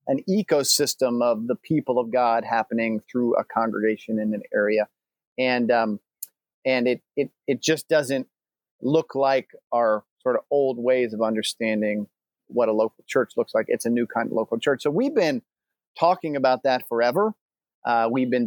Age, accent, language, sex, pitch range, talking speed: 40-59, American, English, male, 120-145 Hz, 175 wpm